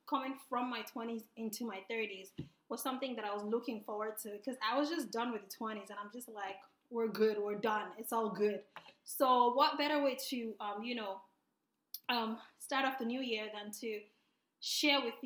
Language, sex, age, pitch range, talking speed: English, female, 20-39, 210-265 Hz, 205 wpm